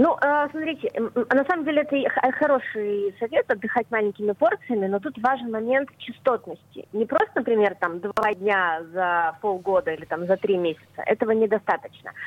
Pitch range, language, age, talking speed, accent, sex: 190-240 Hz, Russian, 20-39, 150 wpm, native, female